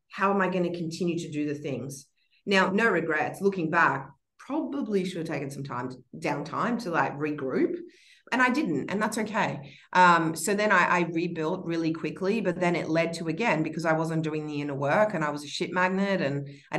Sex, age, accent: female, 30-49, Australian